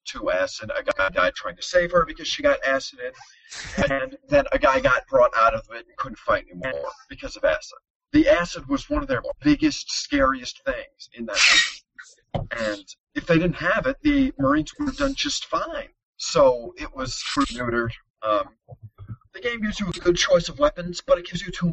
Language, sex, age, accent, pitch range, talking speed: English, male, 30-49, American, 170-290 Hz, 205 wpm